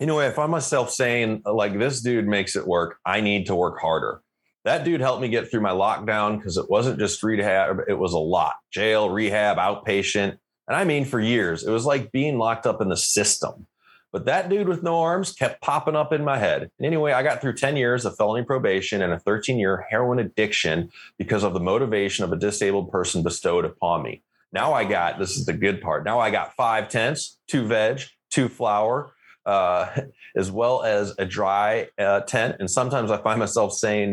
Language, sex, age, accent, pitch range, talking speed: English, male, 30-49, American, 105-135 Hz, 210 wpm